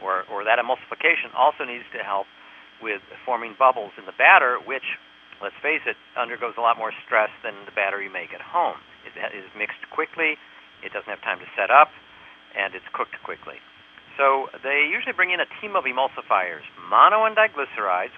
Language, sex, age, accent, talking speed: English, male, 50-69, American, 190 wpm